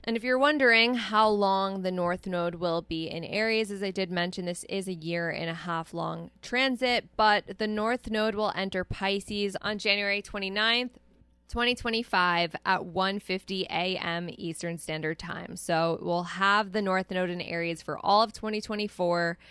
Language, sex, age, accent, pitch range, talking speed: English, female, 10-29, American, 175-210 Hz, 170 wpm